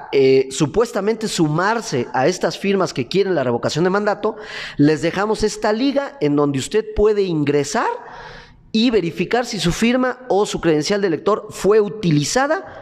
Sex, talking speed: male, 155 wpm